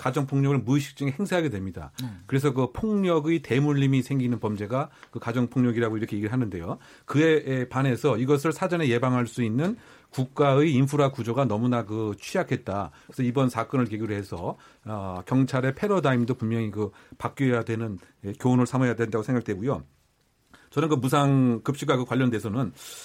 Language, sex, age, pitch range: Korean, male, 40-59, 120-145 Hz